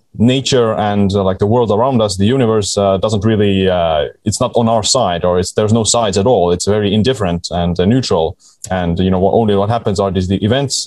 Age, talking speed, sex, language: 20-39, 240 wpm, male, English